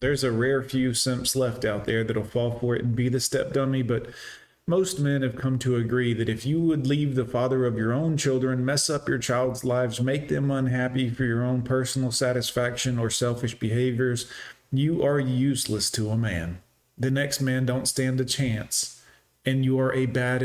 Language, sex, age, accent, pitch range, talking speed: English, male, 40-59, American, 120-140 Hz, 205 wpm